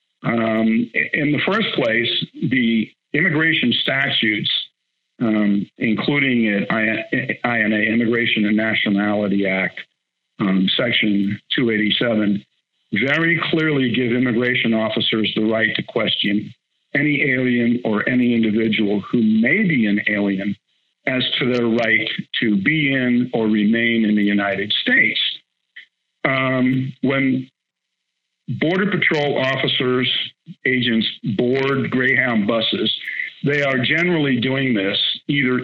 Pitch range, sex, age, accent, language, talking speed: 110-135 Hz, male, 50-69, American, English, 110 wpm